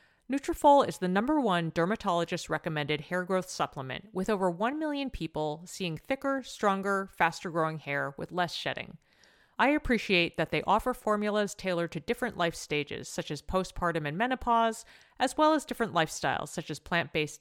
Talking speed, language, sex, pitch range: 160 wpm, English, female, 160-225 Hz